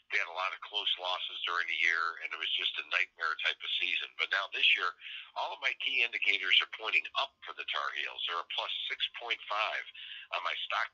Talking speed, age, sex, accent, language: 225 wpm, 50-69, male, American, English